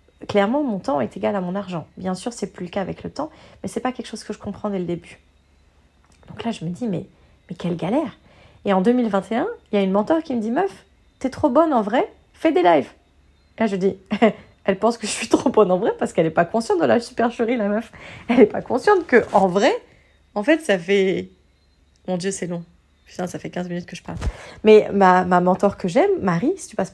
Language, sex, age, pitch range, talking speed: French, female, 30-49, 180-230 Hz, 260 wpm